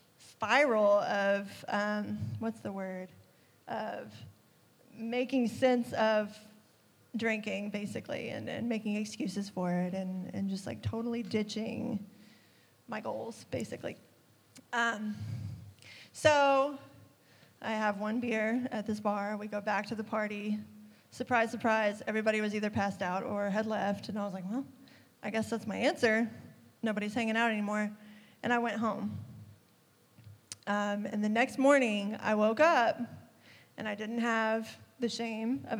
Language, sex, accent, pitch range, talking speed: English, female, American, 205-230 Hz, 140 wpm